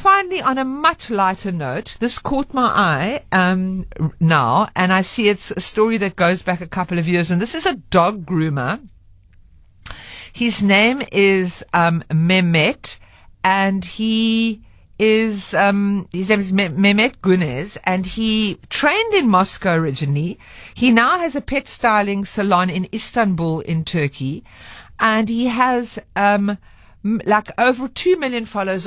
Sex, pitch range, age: female, 165-230 Hz, 50-69